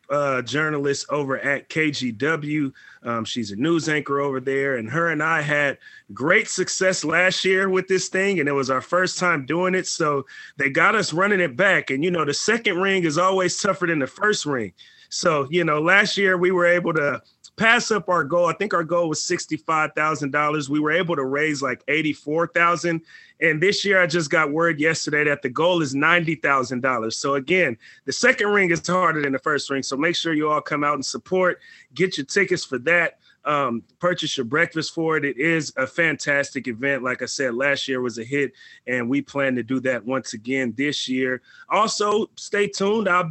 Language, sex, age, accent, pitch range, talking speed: English, male, 30-49, American, 140-175 Hz, 210 wpm